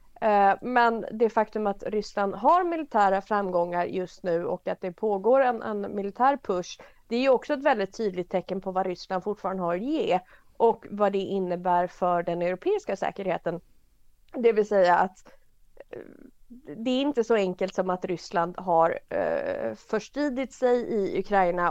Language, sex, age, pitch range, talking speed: Swedish, female, 30-49, 185-235 Hz, 160 wpm